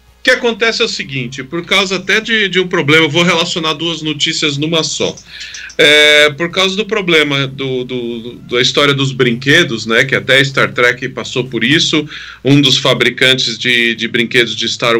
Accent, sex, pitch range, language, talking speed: Brazilian, male, 120-150 Hz, Portuguese, 175 wpm